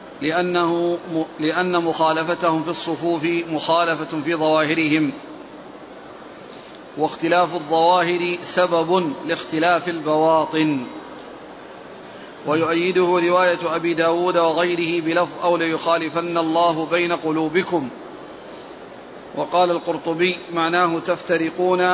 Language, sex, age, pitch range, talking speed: Arabic, male, 40-59, 160-180 Hz, 75 wpm